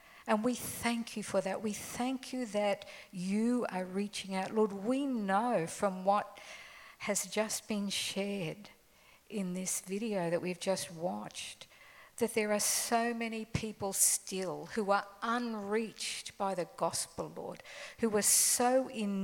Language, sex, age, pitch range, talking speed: English, female, 50-69, 180-220 Hz, 150 wpm